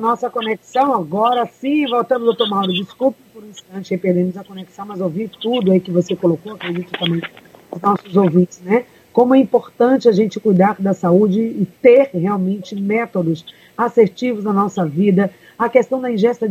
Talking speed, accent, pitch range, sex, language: 175 wpm, Brazilian, 195-235 Hz, female, Portuguese